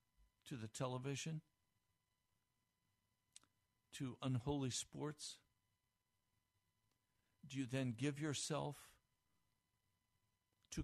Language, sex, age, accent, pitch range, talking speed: English, male, 60-79, American, 105-165 Hz, 65 wpm